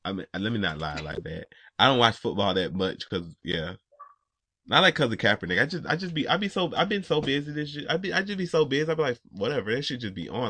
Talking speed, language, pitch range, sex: 290 wpm, English, 115-165 Hz, male